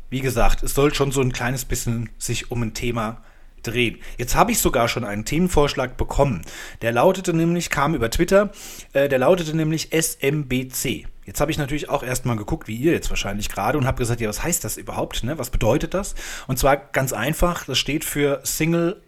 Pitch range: 120-160 Hz